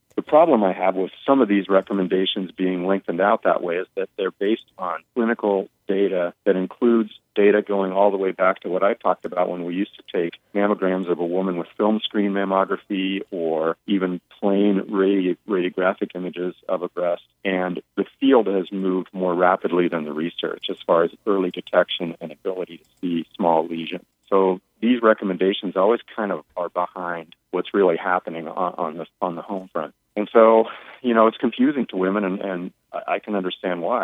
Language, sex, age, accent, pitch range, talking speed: English, male, 40-59, American, 90-100 Hz, 190 wpm